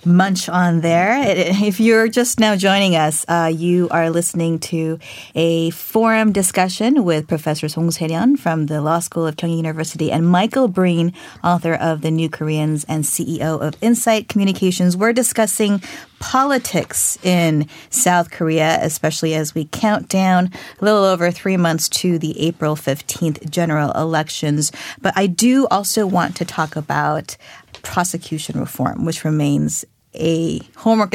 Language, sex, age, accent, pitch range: Korean, female, 30-49, American, 160-195 Hz